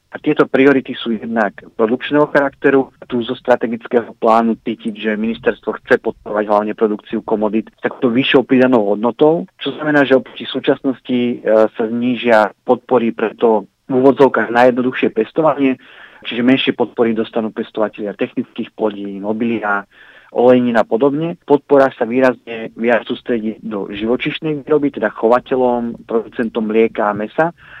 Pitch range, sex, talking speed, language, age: 110-130 Hz, male, 140 wpm, Slovak, 40-59